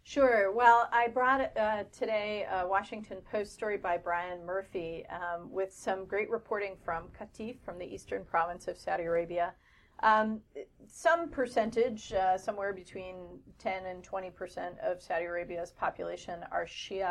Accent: American